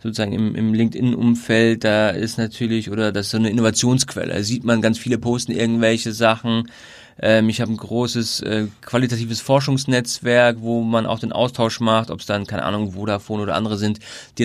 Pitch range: 110-130 Hz